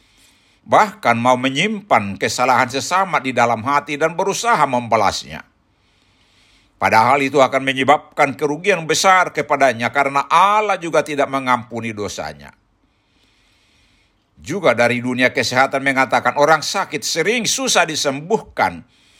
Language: Indonesian